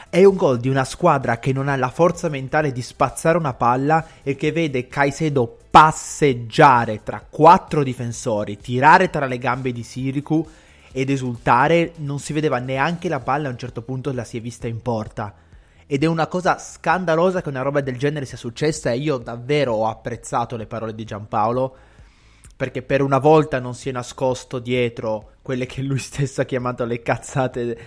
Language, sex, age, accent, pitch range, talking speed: Italian, male, 20-39, native, 120-140 Hz, 185 wpm